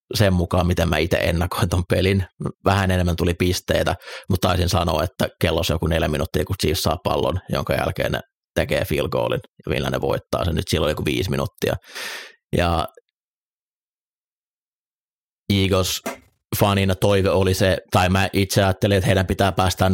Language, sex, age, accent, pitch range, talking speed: Finnish, male, 30-49, native, 85-95 Hz, 155 wpm